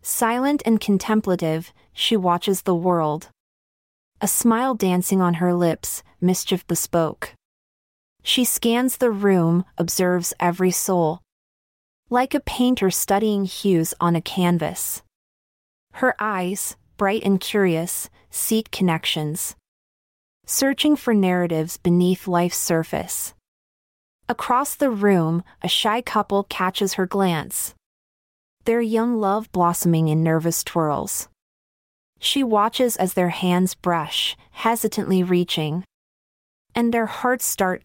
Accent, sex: American, female